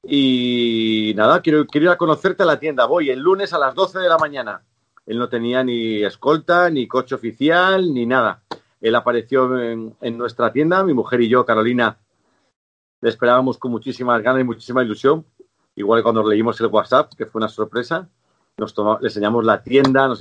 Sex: male